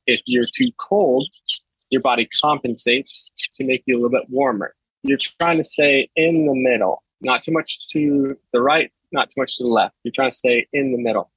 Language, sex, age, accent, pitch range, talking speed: English, male, 20-39, American, 120-140 Hz, 210 wpm